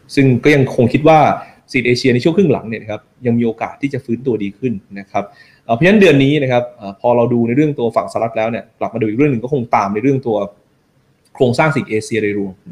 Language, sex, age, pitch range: Thai, male, 20-39, 105-135 Hz